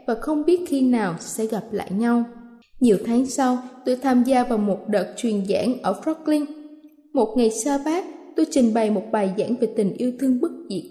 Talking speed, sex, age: 210 wpm, female, 20-39